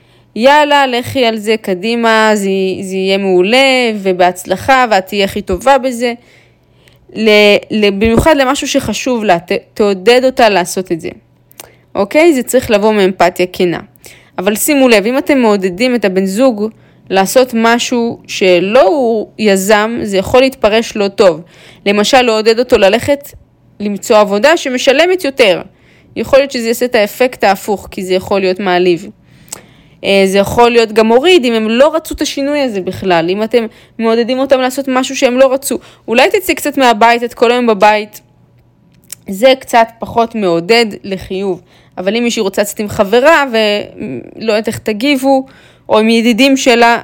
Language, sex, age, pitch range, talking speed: Hebrew, female, 20-39, 195-255 Hz, 150 wpm